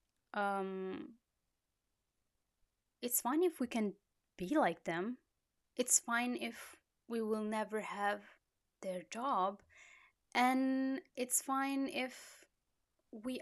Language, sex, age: Italian, female, 20-39